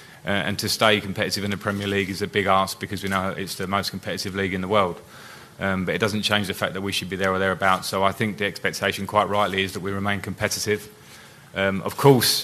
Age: 30-49